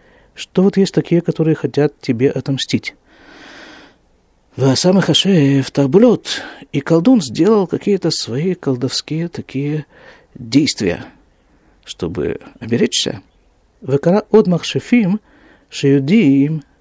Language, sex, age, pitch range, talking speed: Russian, male, 50-69, 125-180 Hz, 70 wpm